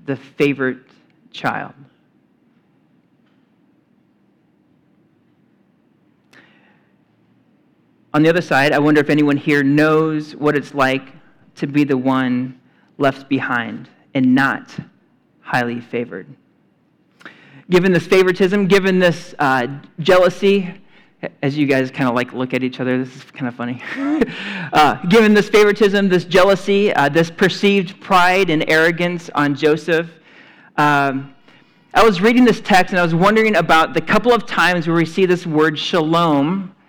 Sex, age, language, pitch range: male, 40-59, English, 140-185 Hz